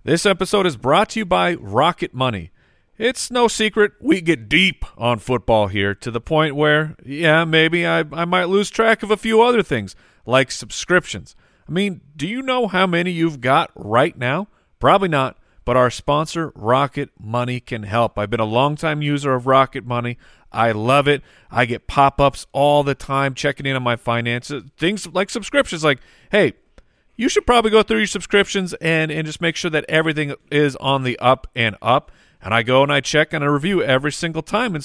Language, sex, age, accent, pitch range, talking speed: English, male, 40-59, American, 115-170 Hz, 200 wpm